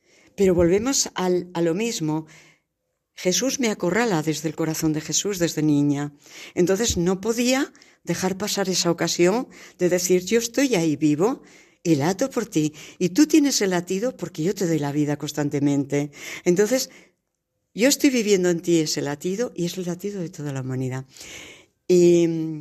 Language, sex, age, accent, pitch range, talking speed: Spanish, female, 60-79, Spanish, 155-190 Hz, 160 wpm